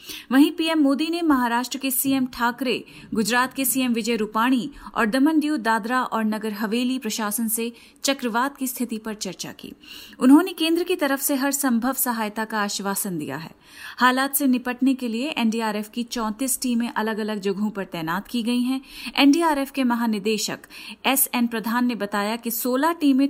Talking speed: 175 wpm